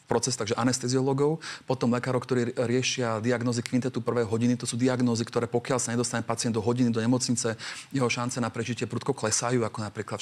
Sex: male